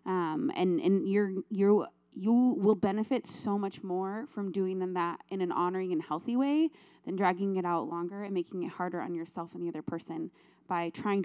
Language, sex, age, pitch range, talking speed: English, female, 20-39, 180-220 Hz, 205 wpm